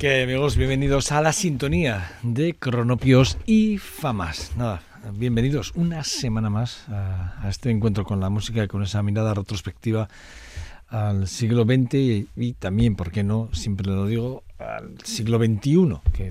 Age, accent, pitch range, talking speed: 60-79, Spanish, 95-115 Hz, 155 wpm